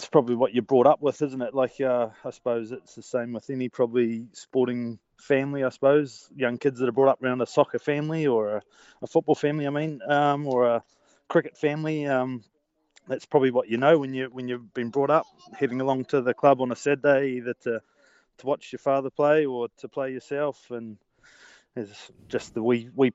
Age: 20-39